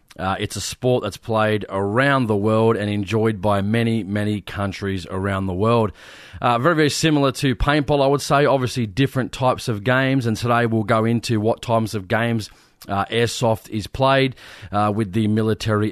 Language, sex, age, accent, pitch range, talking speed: English, male, 30-49, Australian, 105-125 Hz, 185 wpm